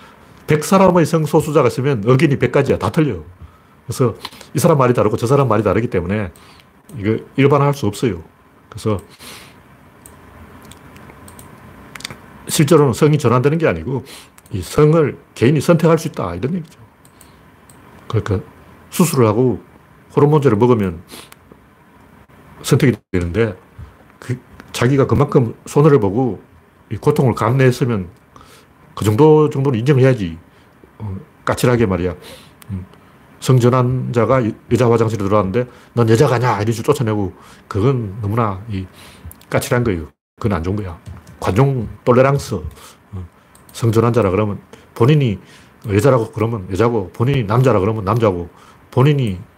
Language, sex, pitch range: Korean, male, 100-140 Hz